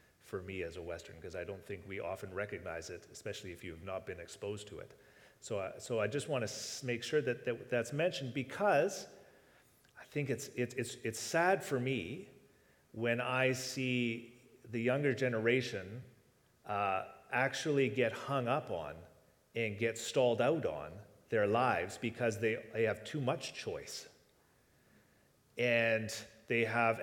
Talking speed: 160 wpm